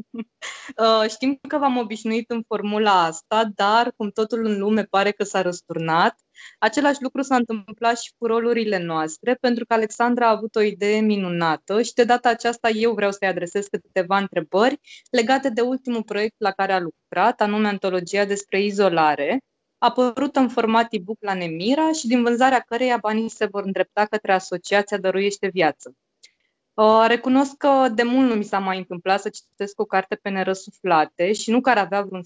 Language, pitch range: Romanian, 195-240 Hz